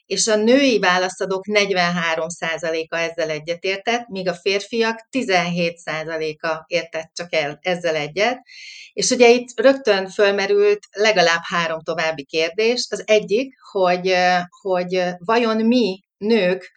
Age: 30-49